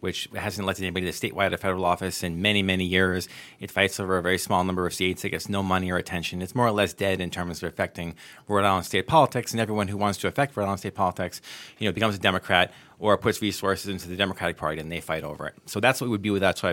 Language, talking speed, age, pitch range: English, 280 wpm, 30-49, 95-120 Hz